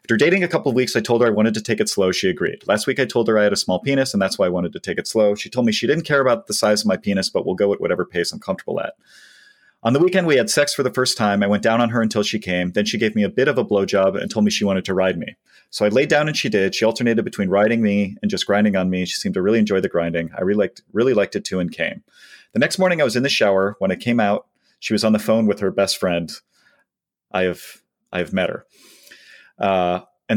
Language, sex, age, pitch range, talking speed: English, male, 30-49, 100-125 Hz, 300 wpm